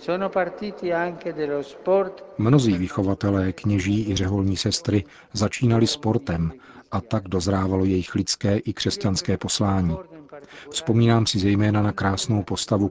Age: 50-69